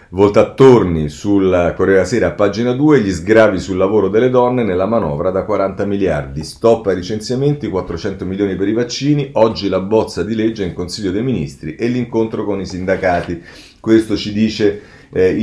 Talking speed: 185 wpm